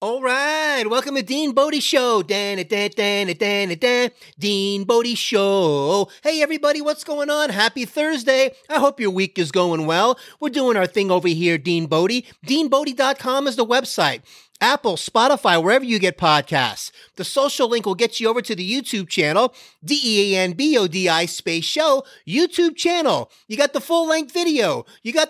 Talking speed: 155 wpm